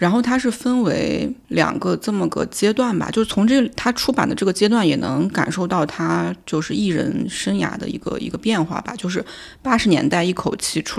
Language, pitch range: Chinese, 165-215 Hz